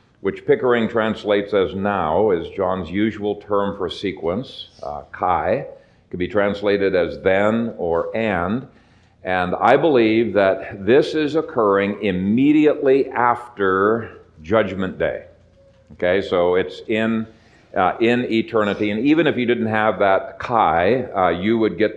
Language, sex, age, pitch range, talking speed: English, male, 50-69, 100-120 Hz, 140 wpm